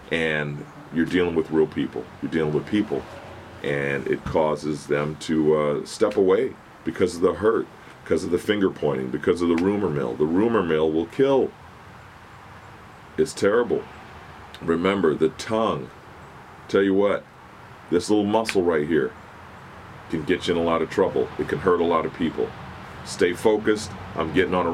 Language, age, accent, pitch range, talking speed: English, 40-59, American, 85-105 Hz, 170 wpm